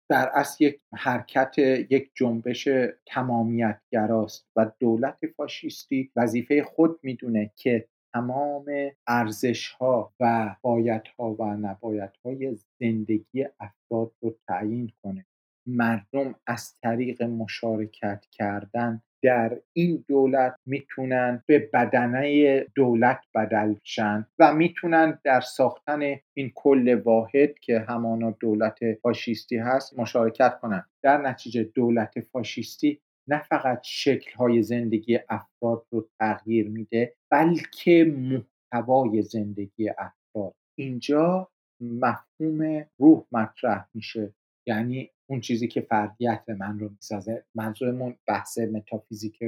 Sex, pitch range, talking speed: male, 115-135 Hz, 105 wpm